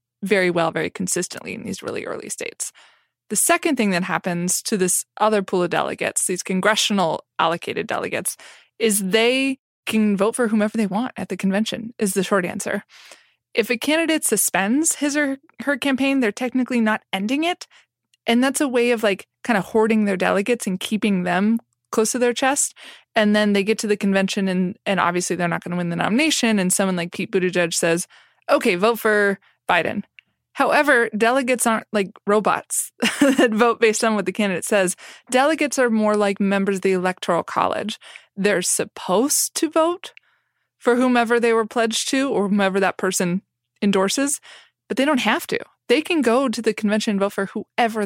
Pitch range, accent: 195-255 Hz, American